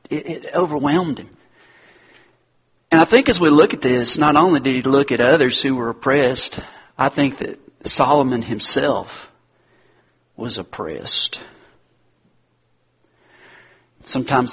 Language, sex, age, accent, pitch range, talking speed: English, male, 40-59, American, 125-155 Hz, 120 wpm